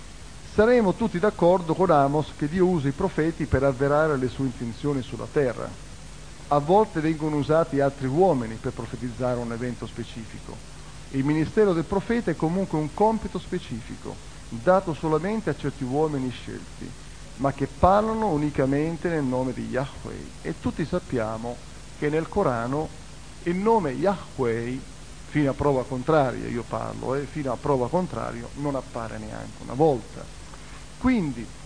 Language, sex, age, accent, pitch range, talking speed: Italian, male, 40-59, native, 135-180 Hz, 145 wpm